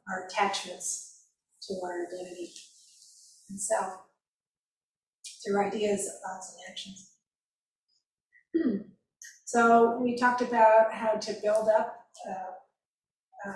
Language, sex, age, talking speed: English, female, 50-69, 95 wpm